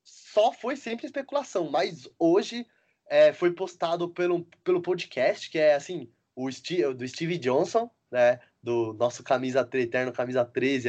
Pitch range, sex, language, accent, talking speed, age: 140-225 Hz, male, Portuguese, Brazilian, 155 wpm, 20-39